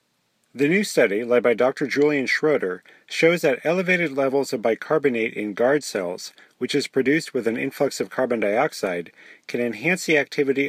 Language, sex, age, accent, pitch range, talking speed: English, male, 40-59, American, 120-150 Hz, 170 wpm